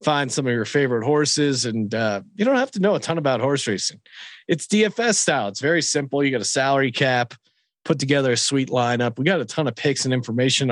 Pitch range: 125-165 Hz